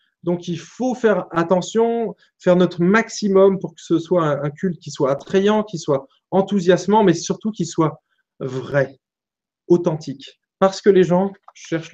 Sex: male